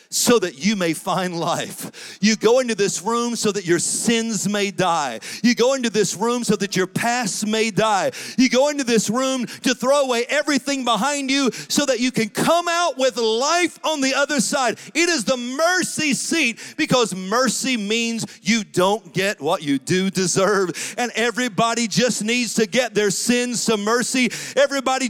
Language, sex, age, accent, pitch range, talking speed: English, male, 40-59, American, 180-255 Hz, 185 wpm